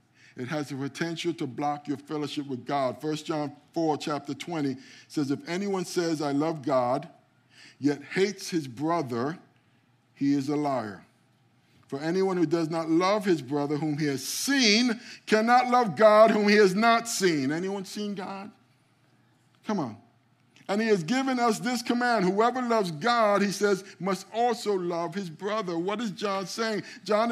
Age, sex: 50-69, male